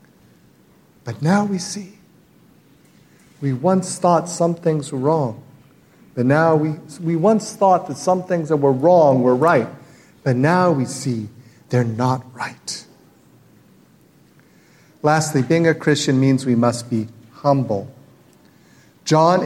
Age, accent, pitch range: 50-69, American, 120-160 Hz